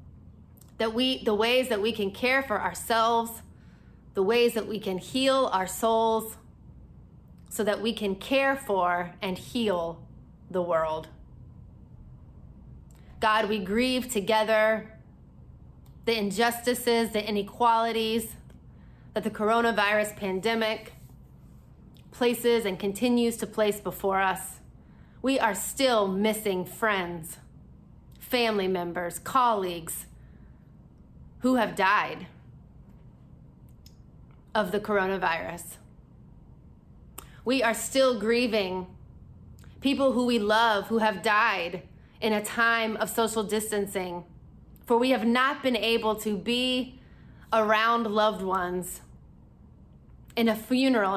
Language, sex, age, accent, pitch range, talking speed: English, female, 30-49, American, 190-230 Hz, 110 wpm